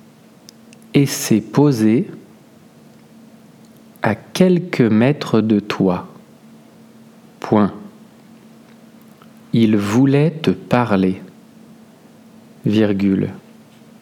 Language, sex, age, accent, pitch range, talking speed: French, male, 50-69, French, 135-225 Hz, 60 wpm